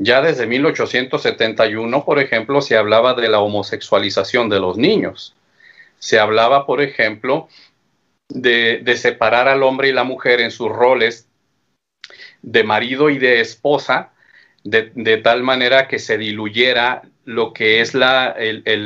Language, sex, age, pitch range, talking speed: Spanish, male, 40-59, 110-130 Hz, 145 wpm